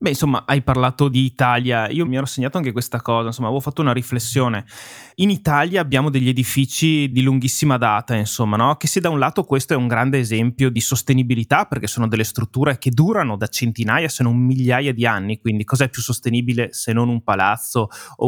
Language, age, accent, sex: Italian, 20-39, native, male